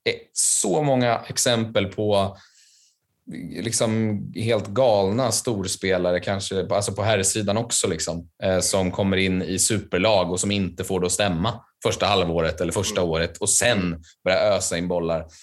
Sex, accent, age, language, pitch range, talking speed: male, native, 20-39, Swedish, 90-110 Hz, 150 wpm